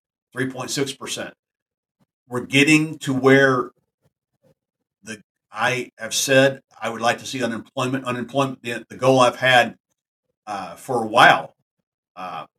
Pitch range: 120-135 Hz